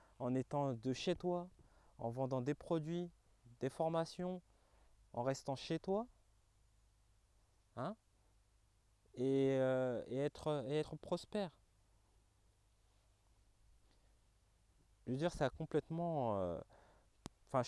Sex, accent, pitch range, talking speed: male, French, 100-145 Hz, 105 wpm